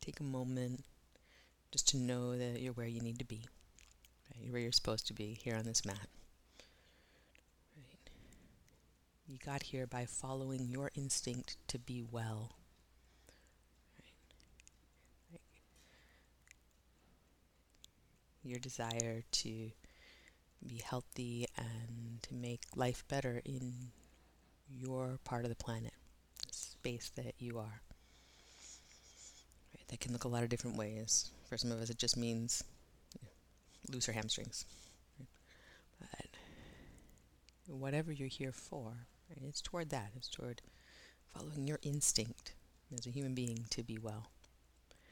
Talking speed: 125 wpm